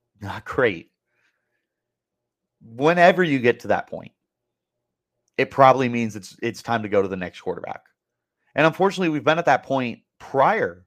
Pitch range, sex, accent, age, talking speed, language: 105-145 Hz, male, American, 30-49, 155 wpm, English